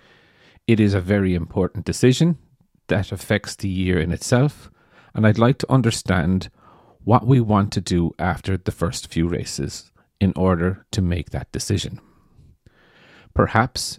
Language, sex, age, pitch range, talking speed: English, male, 30-49, 90-115 Hz, 145 wpm